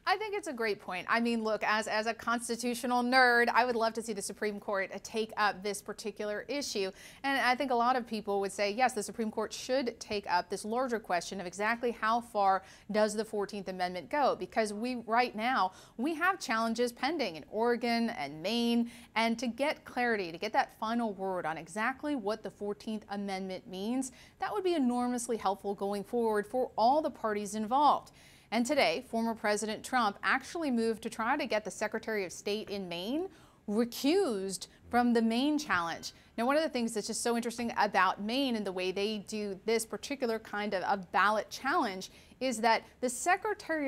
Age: 30-49